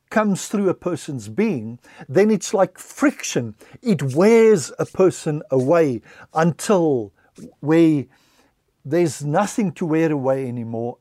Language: English